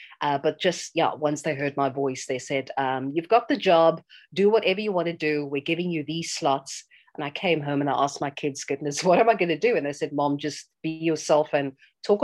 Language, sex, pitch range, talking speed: English, female, 140-170 Hz, 255 wpm